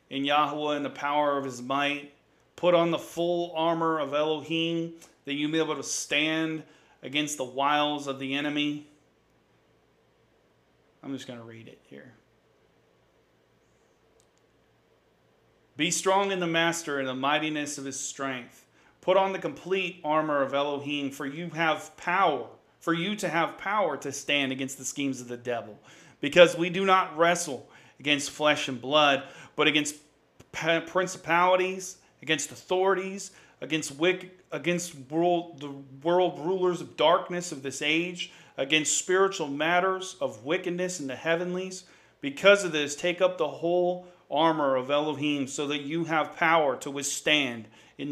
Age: 40-59